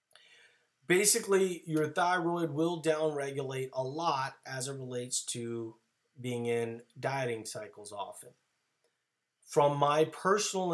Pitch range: 115-140 Hz